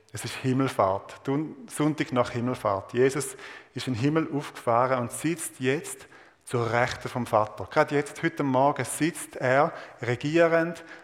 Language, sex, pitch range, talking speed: German, male, 120-150 Hz, 140 wpm